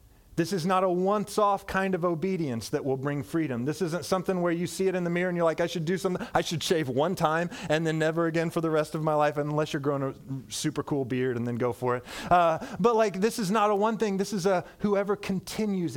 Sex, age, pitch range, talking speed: male, 30-49, 150-200 Hz, 265 wpm